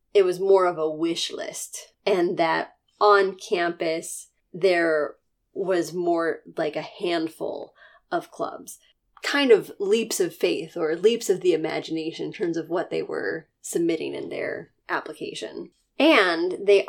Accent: American